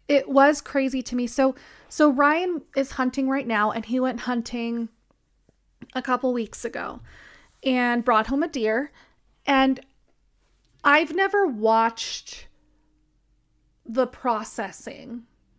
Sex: female